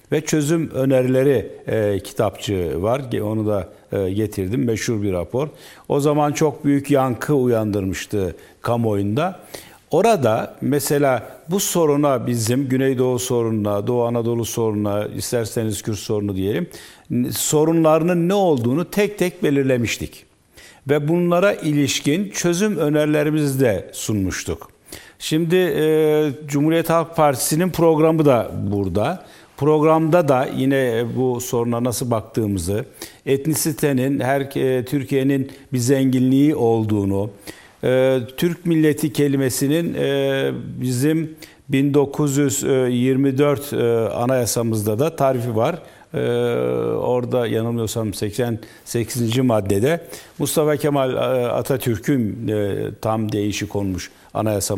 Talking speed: 105 wpm